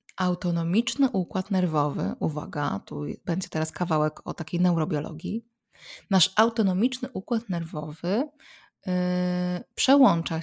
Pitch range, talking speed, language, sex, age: 175-215 Hz, 90 wpm, Polish, female, 20-39